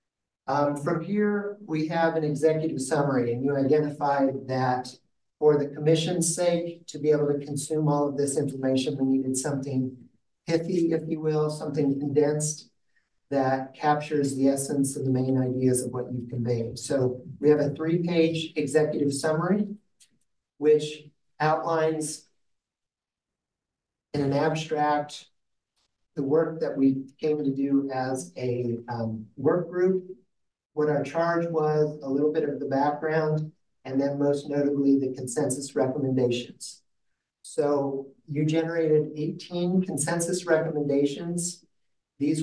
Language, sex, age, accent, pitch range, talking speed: English, male, 50-69, American, 140-160 Hz, 135 wpm